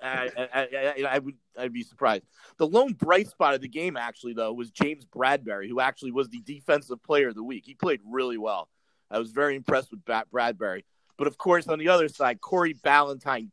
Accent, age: American, 30-49